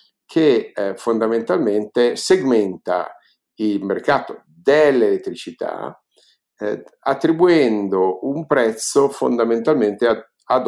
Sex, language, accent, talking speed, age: male, Italian, native, 80 wpm, 50-69